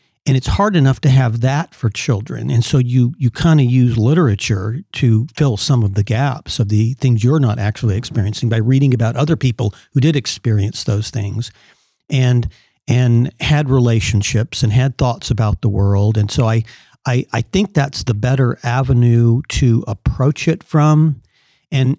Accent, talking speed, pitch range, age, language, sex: American, 175 wpm, 110-135 Hz, 50-69, English, male